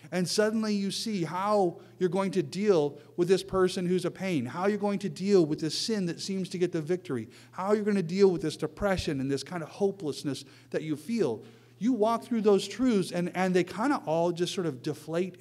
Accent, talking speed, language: American, 235 wpm, English